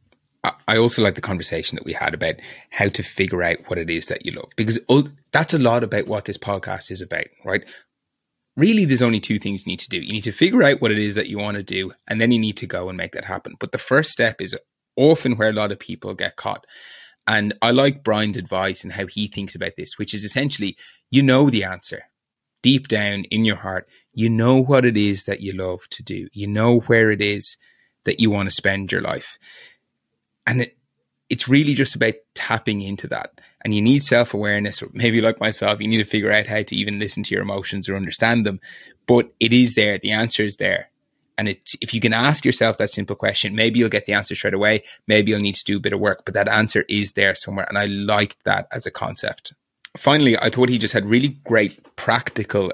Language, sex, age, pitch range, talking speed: English, male, 20-39, 100-120 Hz, 235 wpm